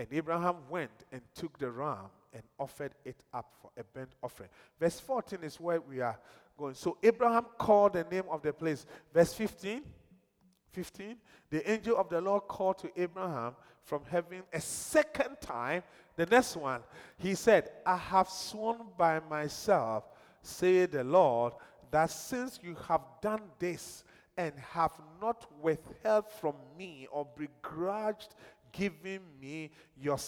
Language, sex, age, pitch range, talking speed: English, male, 40-59, 155-215 Hz, 150 wpm